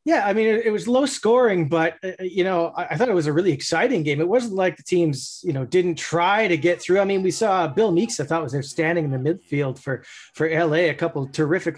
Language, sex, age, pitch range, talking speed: English, male, 30-49, 155-190 Hz, 275 wpm